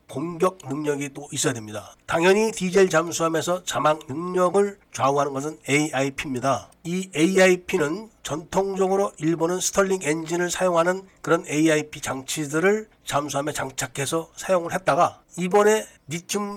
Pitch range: 145-185 Hz